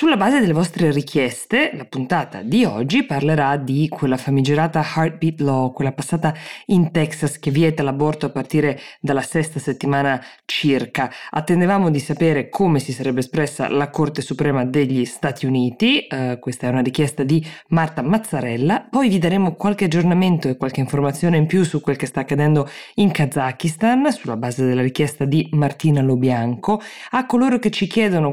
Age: 20-39